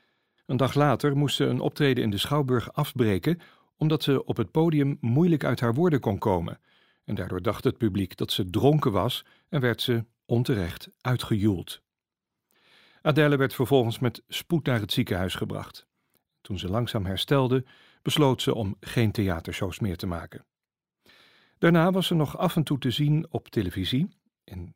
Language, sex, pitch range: Dutch, male, 100-140 Hz